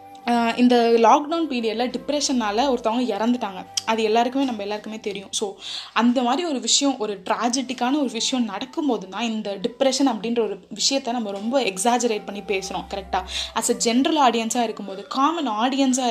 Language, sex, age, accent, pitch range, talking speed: Tamil, female, 20-39, native, 215-265 Hz, 150 wpm